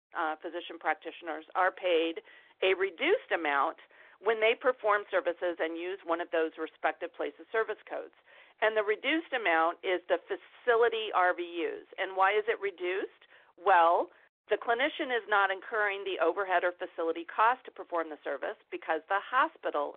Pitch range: 165-230 Hz